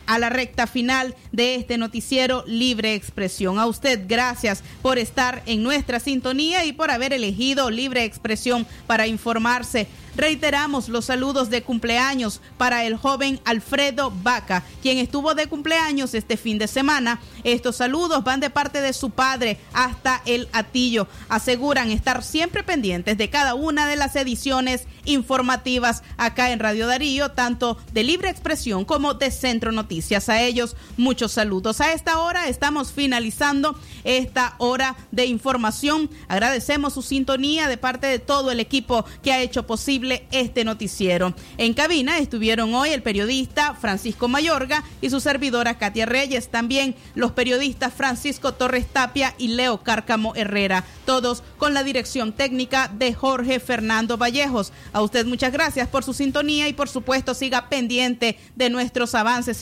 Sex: female